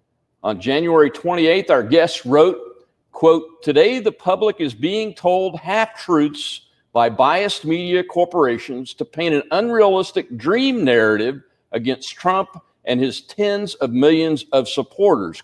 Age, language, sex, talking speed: 50-69, English, male, 130 wpm